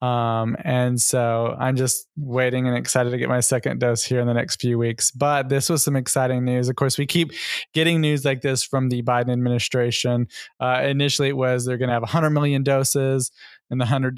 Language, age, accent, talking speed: English, 20-39, American, 215 wpm